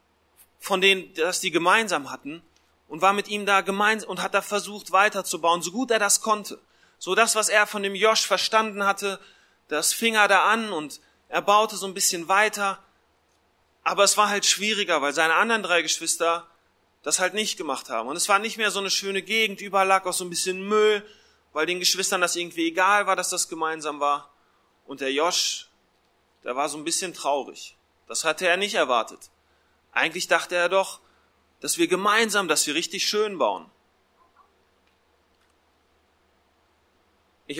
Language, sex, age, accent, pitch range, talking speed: German, male, 30-49, German, 150-200 Hz, 175 wpm